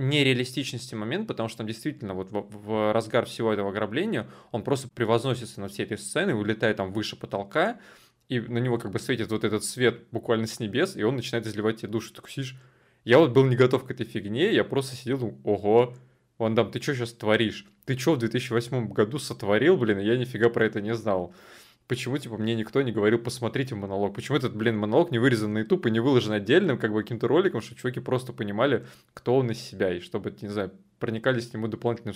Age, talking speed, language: 20-39, 215 wpm, Russian